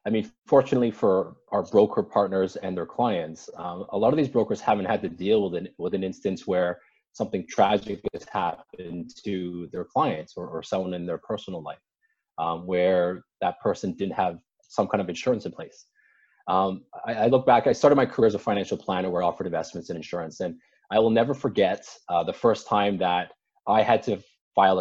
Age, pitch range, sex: 20-39, 95-140 Hz, male